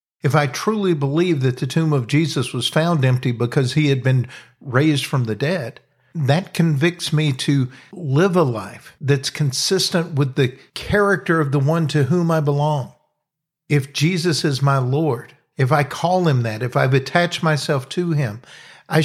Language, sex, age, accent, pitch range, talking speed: English, male, 50-69, American, 130-160 Hz, 175 wpm